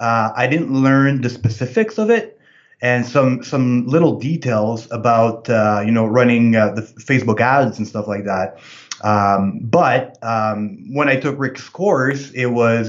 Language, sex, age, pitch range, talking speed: English, male, 20-39, 115-135 Hz, 170 wpm